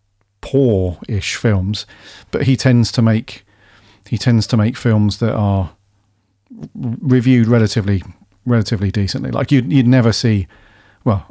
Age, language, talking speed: 40-59, English, 135 wpm